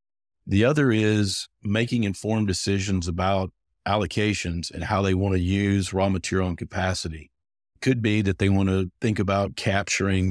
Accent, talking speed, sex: American, 155 wpm, male